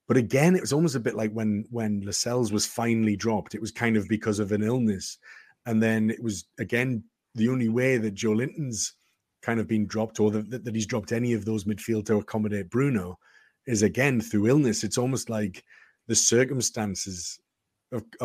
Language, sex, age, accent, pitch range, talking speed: English, male, 30-49, British, 105-120 Hz, 195 wpm